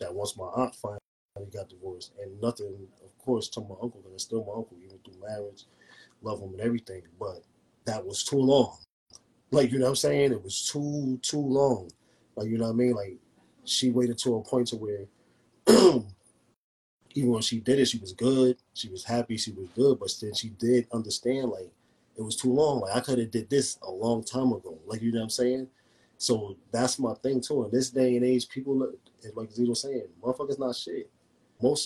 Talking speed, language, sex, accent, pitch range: 215 wpm, English, male, American, 105-125 Hz